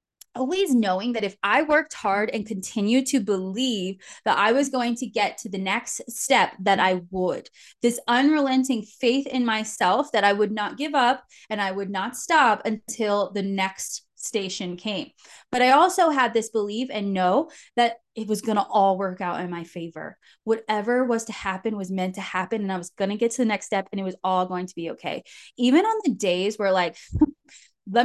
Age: 20-39